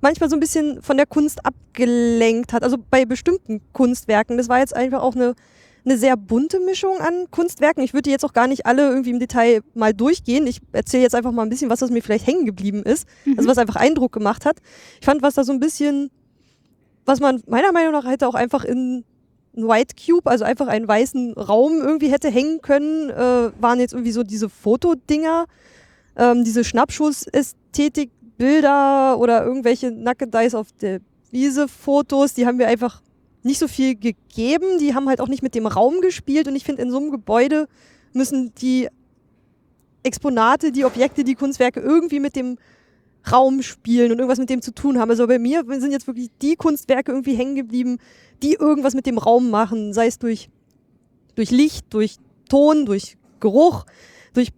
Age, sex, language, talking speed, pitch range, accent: 20-39, female, German, 190 wpm, 240-285 Hz, German